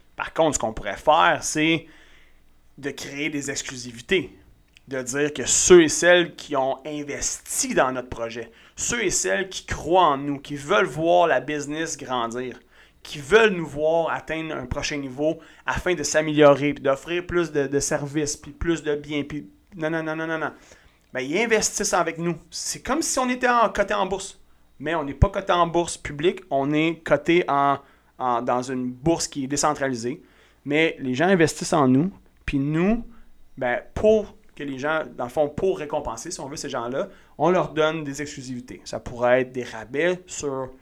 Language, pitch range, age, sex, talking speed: French, 130-165 Hz, 30-49, male, 190 wpm